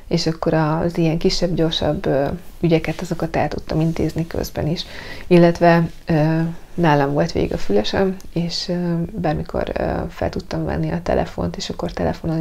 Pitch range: 155-175 Hz